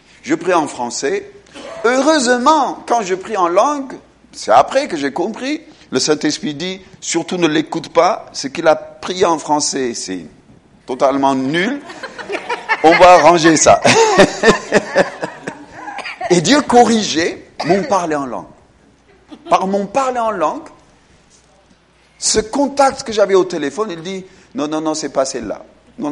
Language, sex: French, male